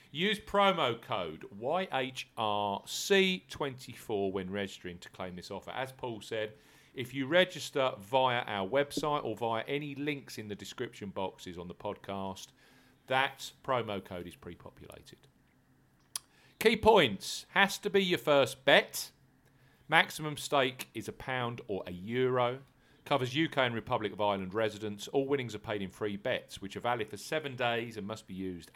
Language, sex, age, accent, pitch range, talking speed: English, male, 40-59, British, 100-140 Hz, 155 wpm